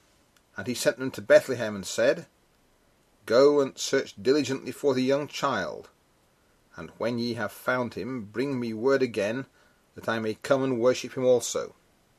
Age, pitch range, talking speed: 40-59, 115-145 Hz, 165 wpm